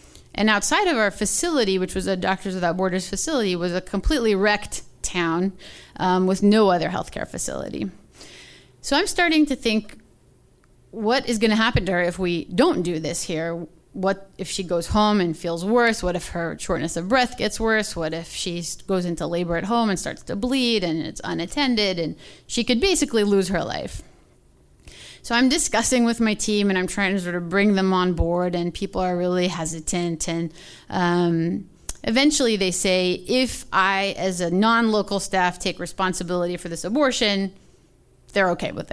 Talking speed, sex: 185 wpm, female